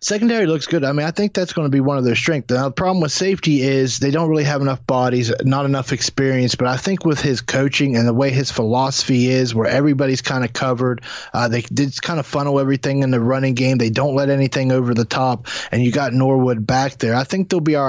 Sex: male